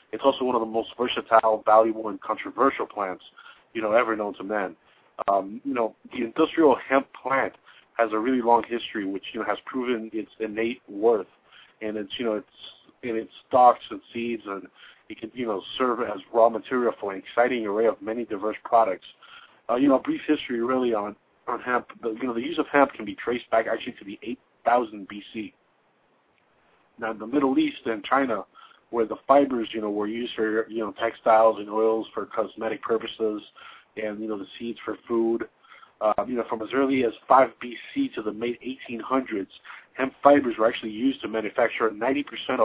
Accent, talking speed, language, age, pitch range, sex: American, 200 wpm, English, 40-59, 110-125 Hz, male